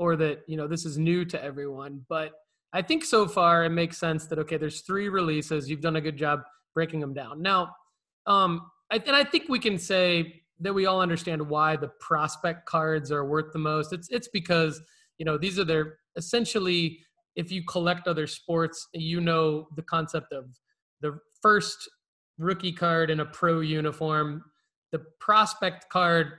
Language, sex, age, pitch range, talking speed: English, male, 20-39, 155-185 Hz, 185 wpm